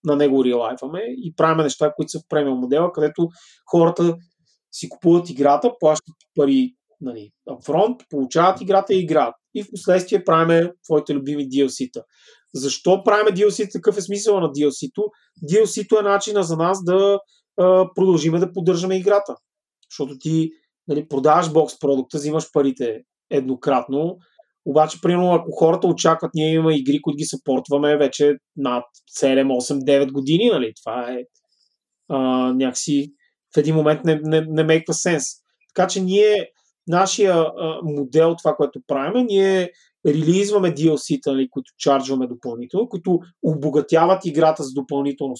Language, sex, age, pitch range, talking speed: Bulgarian, male, 30-49, 145-185 Hz, 145 wpm